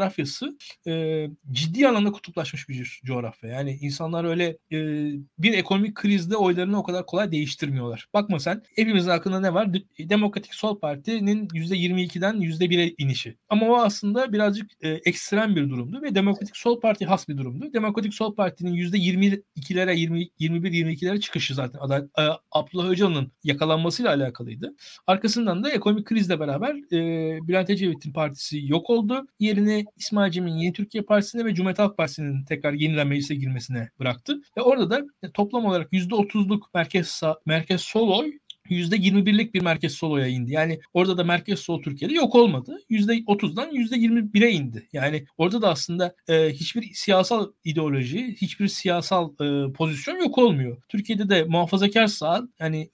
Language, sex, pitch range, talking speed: Turkish, male, 155-210 Hz, 150 wpm